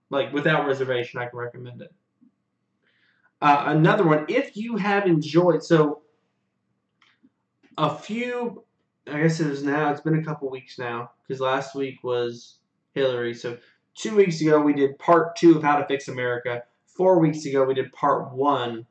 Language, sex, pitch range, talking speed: English, male, 135-165 Hz, 170 wpm